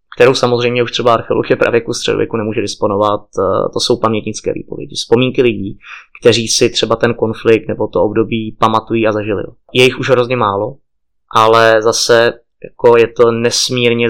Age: 20-39